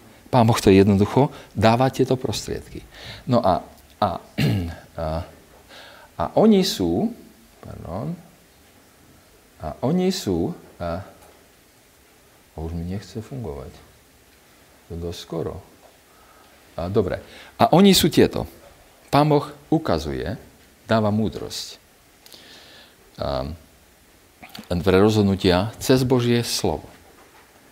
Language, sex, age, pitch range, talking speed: Slovak, male, 50-69, 85-120 Hz, 85 wpm